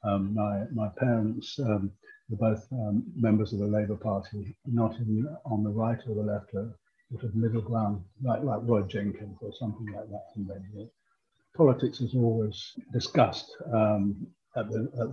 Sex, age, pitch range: male, 60-79, 105-115 Hz